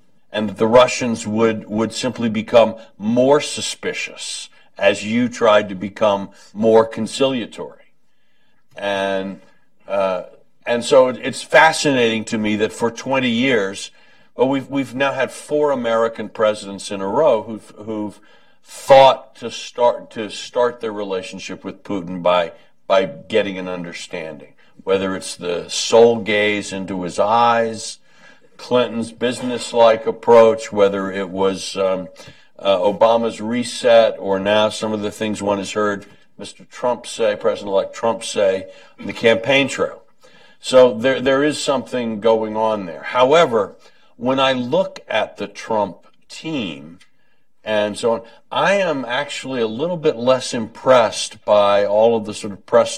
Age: 60-79